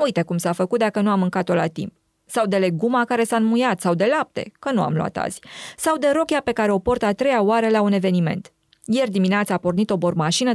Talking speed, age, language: 245 wpm, 20-39, Romanian